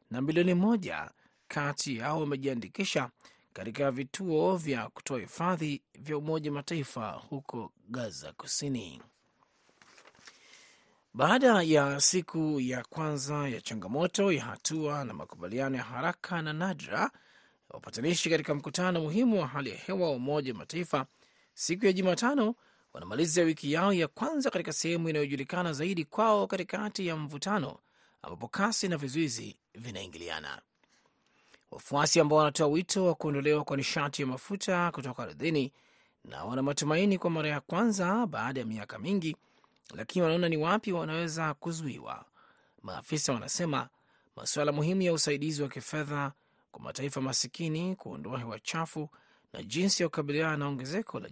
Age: 30-49